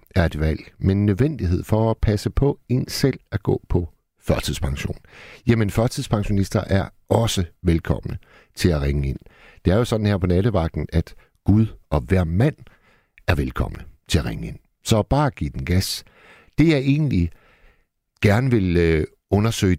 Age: 60-79